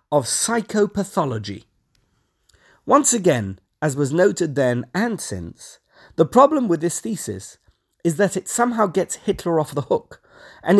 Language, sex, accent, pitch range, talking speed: English, male, British, 135-205 Hz, 140 wpm